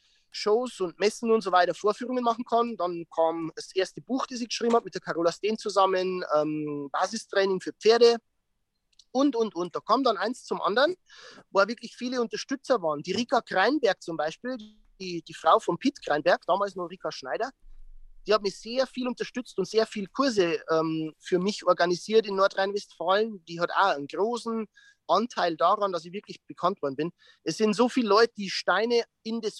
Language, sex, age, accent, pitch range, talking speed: German, male, 30-49, German, 175-220 Hz, 190 wpm